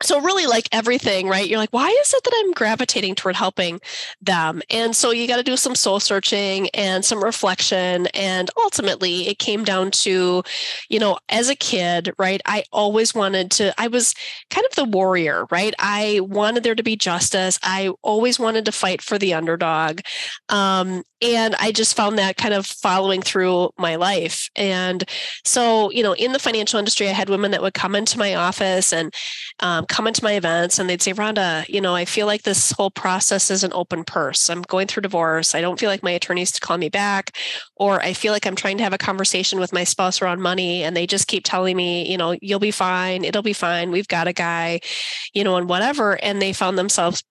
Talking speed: 215 wpm